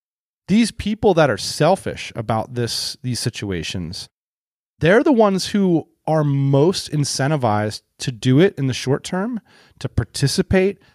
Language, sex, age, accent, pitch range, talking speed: English, male, 30-49, American, 110-145 Hz, 135 wpm